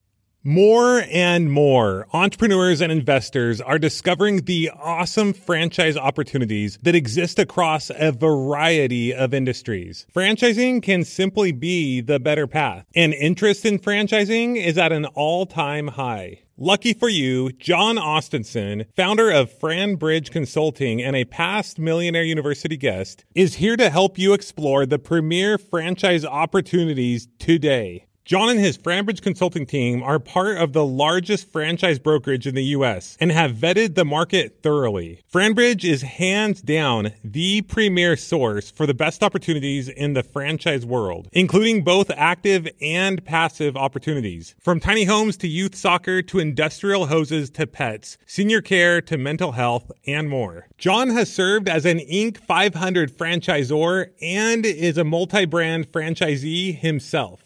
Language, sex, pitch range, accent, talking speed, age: English, male, 140-190 Hz, American, 145 wpm, 30-49